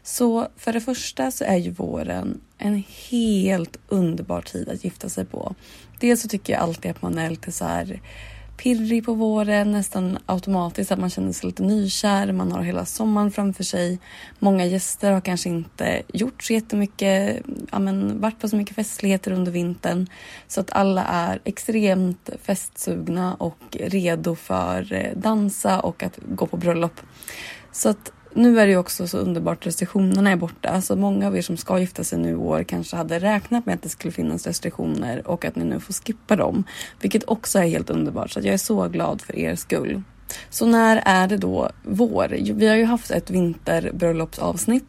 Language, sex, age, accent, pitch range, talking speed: Swedish, female, 30-49, native, 170-215 Hz, 190 wpm